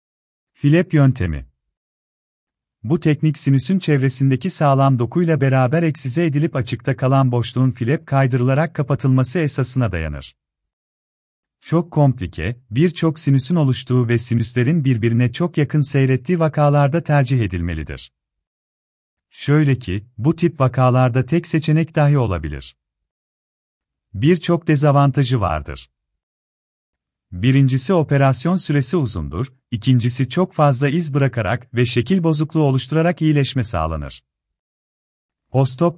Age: 40-59